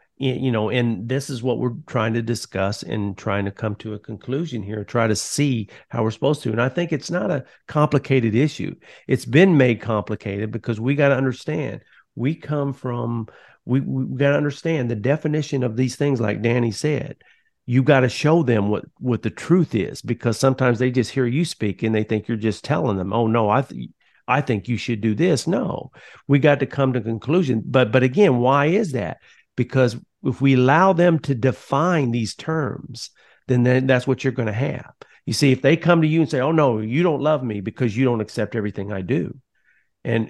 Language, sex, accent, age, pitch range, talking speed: English, male, American, 50-69, 115-145 Hz, 210 wpm